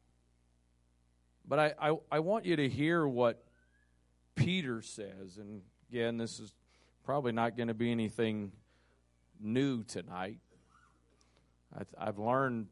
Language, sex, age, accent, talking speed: English, male, 40-59, American, 125 wpm